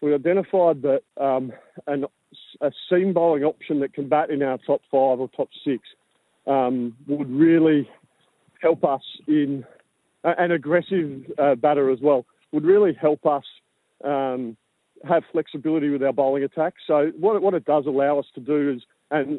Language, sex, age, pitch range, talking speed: English, male, 40-59, 140-160 Hz, 170 wpm